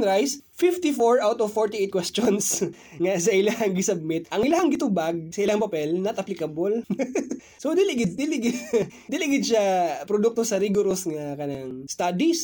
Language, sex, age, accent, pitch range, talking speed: Filipino, male, 20-39, native, 190-265 Hz, 150 wpm